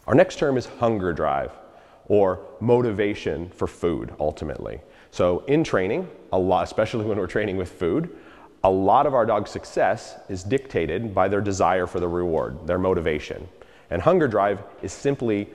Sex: male